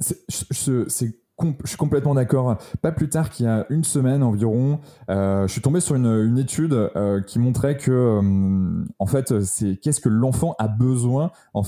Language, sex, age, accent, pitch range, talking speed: French, male, 20-39, French, 105-135 Hz, 195 wpm